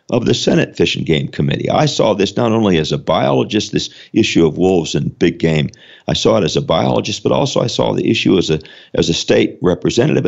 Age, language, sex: 50-69, English, male